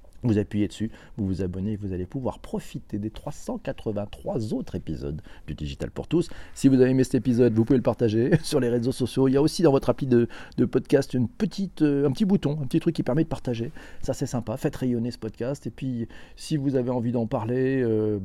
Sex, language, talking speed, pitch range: male, French, 225 wpm, 115-145 Hz